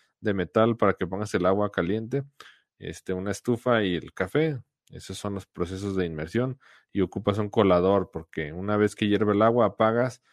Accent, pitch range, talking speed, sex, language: Mexican, 95-120 Hz, 185 wpm, male, Spanish